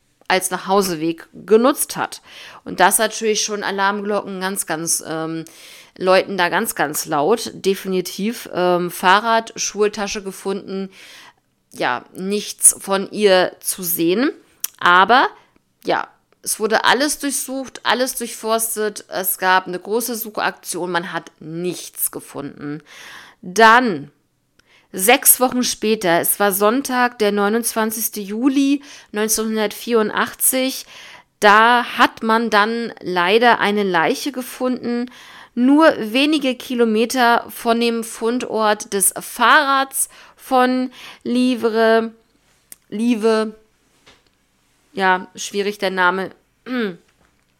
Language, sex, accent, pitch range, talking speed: German, female, German, 190-240 Hz, 100 wpm